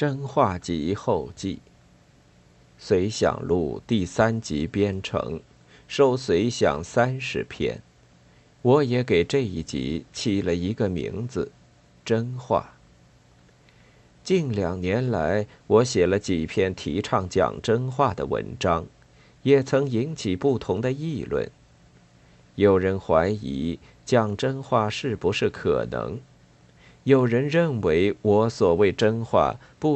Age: 50-69